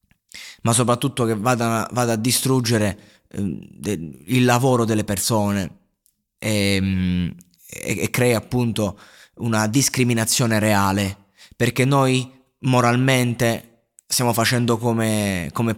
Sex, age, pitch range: male, 20-39, 105-120 Hz